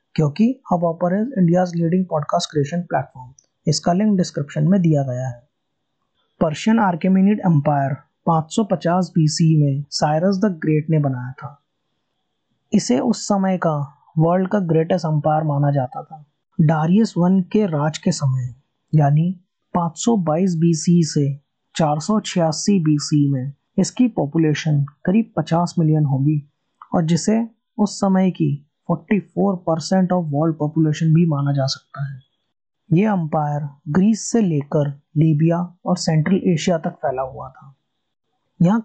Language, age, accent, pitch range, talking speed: Hindi, 20-39, native, 150-185 Hz, 115 wpm